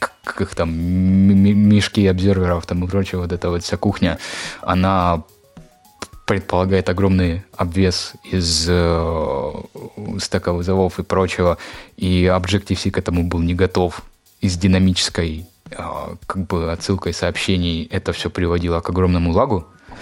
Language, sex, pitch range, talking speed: Russian, male, 80-100 Hz, 130 wpm